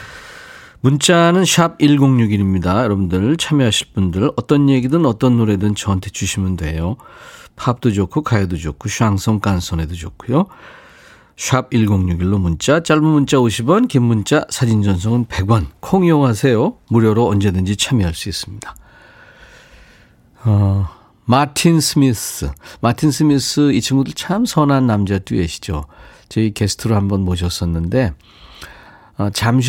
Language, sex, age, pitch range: Korean, male, 50-69, 95-145 Hz